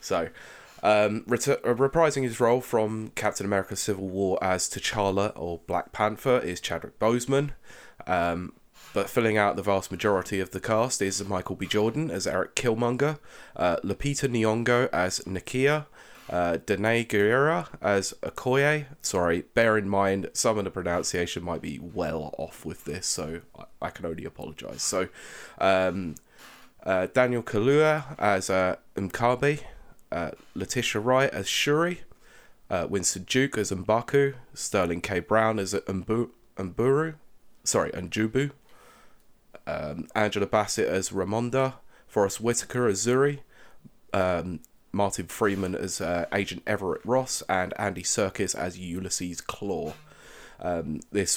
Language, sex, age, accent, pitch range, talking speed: English, male, 20-39, British, 95-125 Hz, 140 wpm